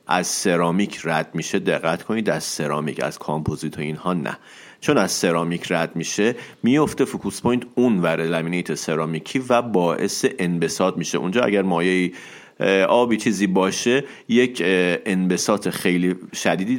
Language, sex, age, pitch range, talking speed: Persian, male, 40-59, 85-115 Hz, 135 wpm